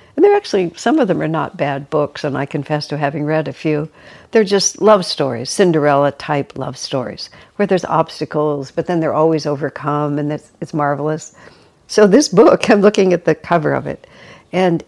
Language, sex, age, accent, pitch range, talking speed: English, female, 60-79, American, 155-185 Hz, 195 wpm